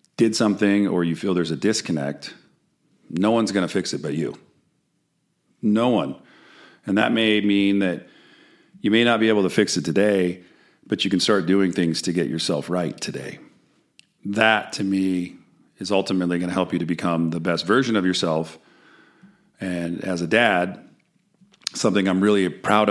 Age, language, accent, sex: 40-59, English, American, male